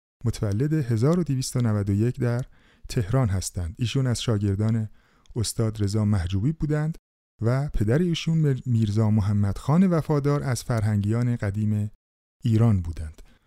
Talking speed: 105 wpm